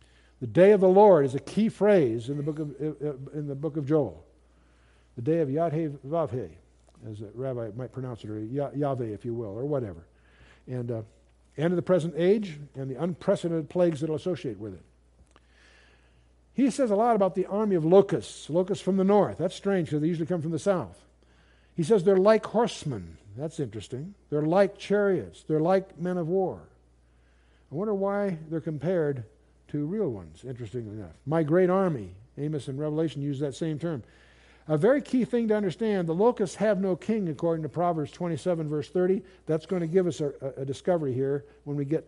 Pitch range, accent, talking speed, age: 120-180 Hz, American, 195 wpm, 60-79